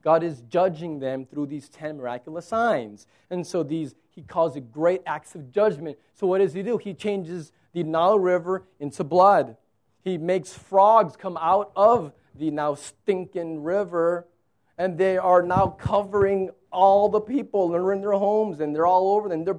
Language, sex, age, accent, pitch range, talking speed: English, male, 30-49, American, 155-195 Hz, 185 wpm